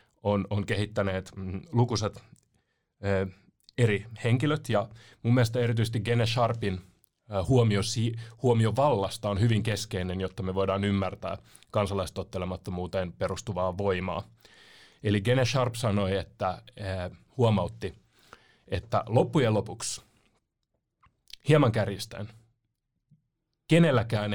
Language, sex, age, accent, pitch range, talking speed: Finnish, male, 30-49, native, 100-120 Hz, 100 wpm